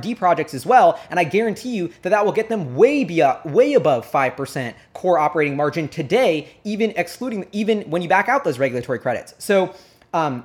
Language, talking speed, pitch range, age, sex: English, 190 wpm, 135-180 Hz, 20-39, male